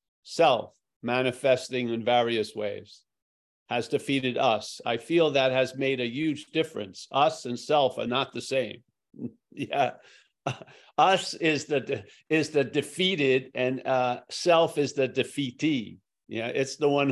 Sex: male